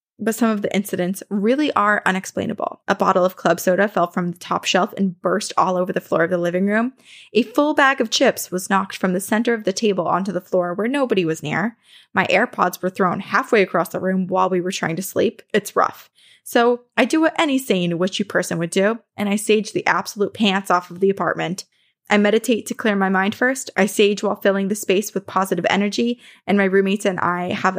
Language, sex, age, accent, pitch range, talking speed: English, female, 20-39, American, 185-225 Hz, 230 wpm